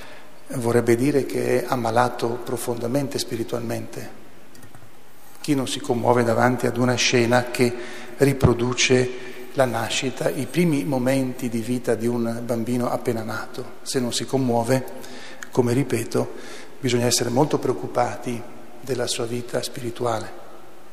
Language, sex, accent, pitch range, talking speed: Italian, male, native, 120-150 Hz, 125 wpm